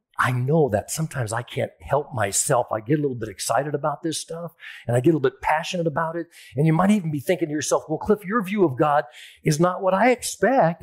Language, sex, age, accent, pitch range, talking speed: English, male, 50-69, American, 145-220 Hz, 250 wpm